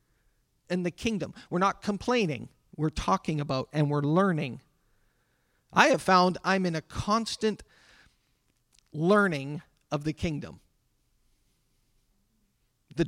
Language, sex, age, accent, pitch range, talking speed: English, male, 50-69, American, 150-205 Hz, 110 wpm